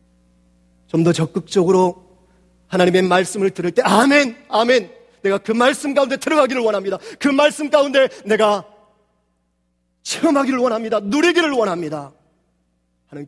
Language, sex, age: Korean, male, 40-59